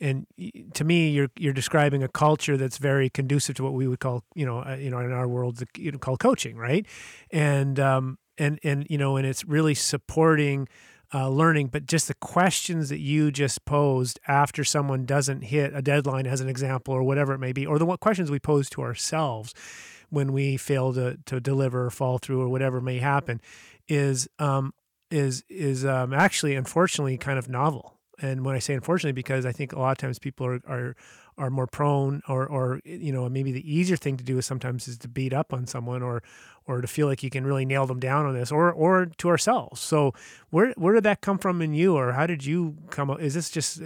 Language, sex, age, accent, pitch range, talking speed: English, male, 30-49, American, 130-150 Hz, 225 wpm